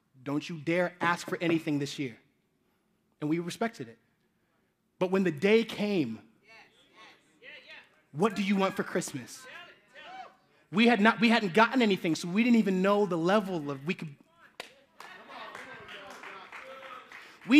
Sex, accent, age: male, American, 30-49